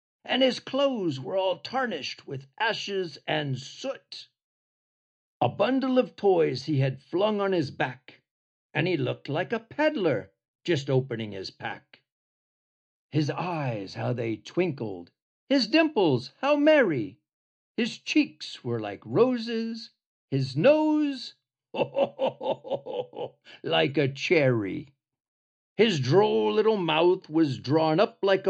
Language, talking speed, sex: Hungarian, 120 wpm, male